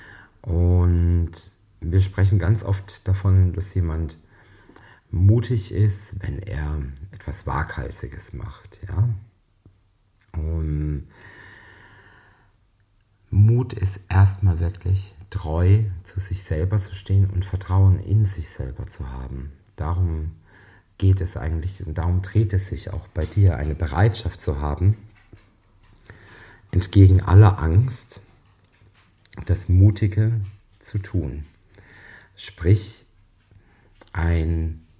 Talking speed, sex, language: 100 wpm, male, German